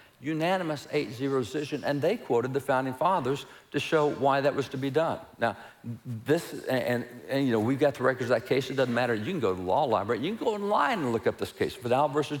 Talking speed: 250 wpm